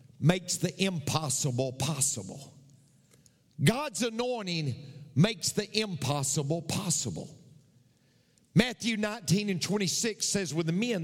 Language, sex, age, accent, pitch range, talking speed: English, male, 50-69, American, 135-195 Hz, 100 wpm